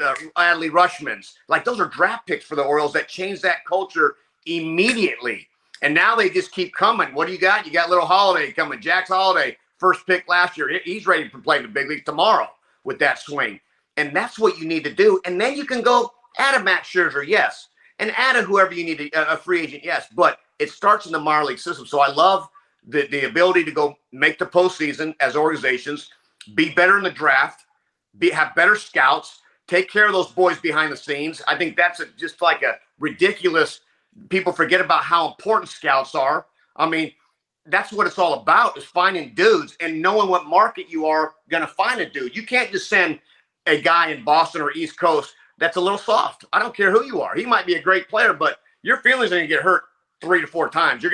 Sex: male